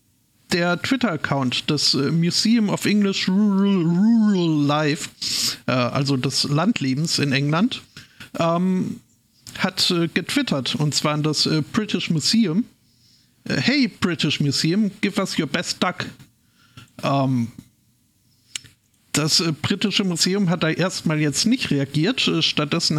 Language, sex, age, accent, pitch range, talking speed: German, male, 50-69, German, 140-175 Hz, 110 wpm